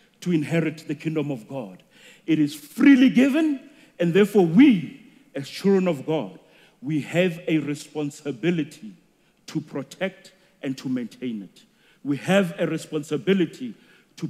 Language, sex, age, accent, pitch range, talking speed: English, male, 40-59, South African, 155-205 Hz, 135 wpm